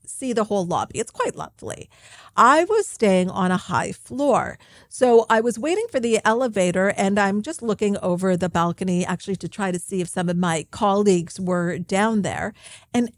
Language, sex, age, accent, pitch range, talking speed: English, female, 50-69, American, 185-240 Hz, 190 wpm